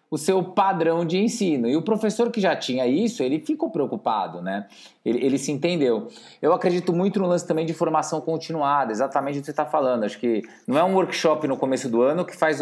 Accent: Brazilian